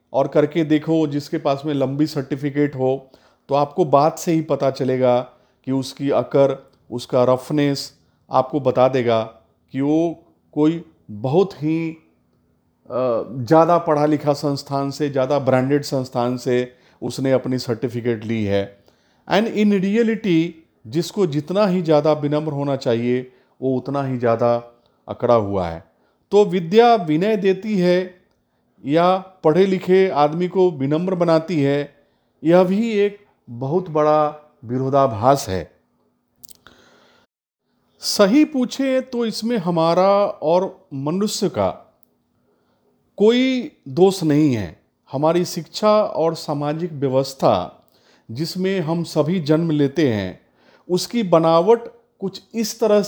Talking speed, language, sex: 110 wpm, English, male